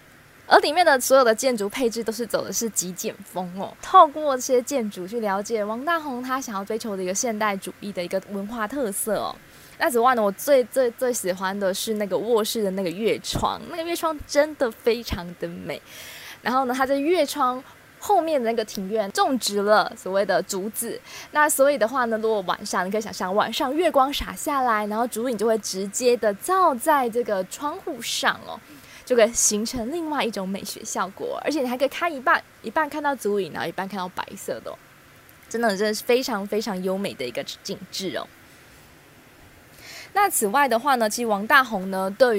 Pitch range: 210-275 Hz